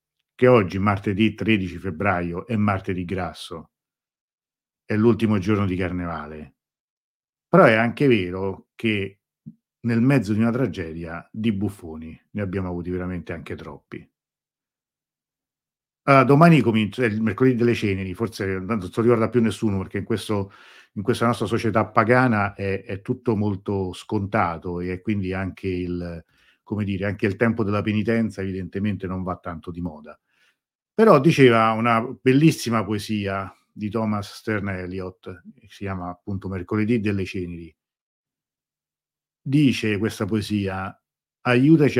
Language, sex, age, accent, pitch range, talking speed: Italian, male, 50-69, native, 90-115 Hz, 135 wpm